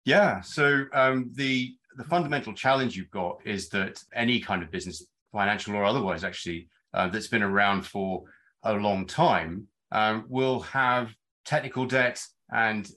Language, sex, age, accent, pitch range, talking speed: English, male, 30-49, British, 100-130 Hz, 155 wpm